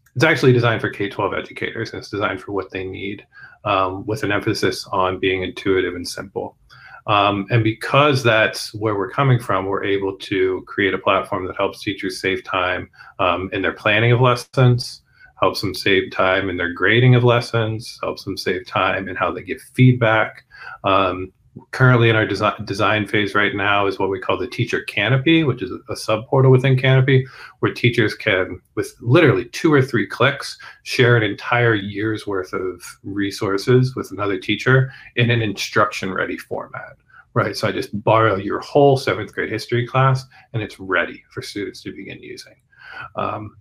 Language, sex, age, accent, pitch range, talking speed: English, male, 40-59, American, 100-130 Hz, 180 wpm